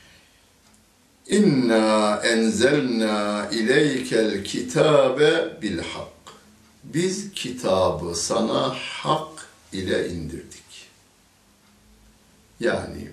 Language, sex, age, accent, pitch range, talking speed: Turkish, male, 60-79, native, 85-115 Hz, 55 wpm